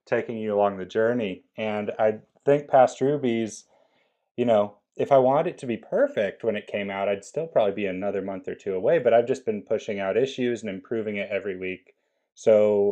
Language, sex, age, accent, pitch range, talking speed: English, male, 30-49, American, 100-120 Hz, 210 wpm